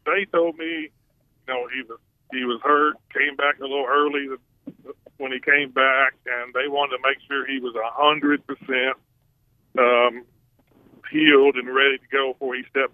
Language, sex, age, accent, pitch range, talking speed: English, male, 40-59, American, 130-150 Hz, 175 wpm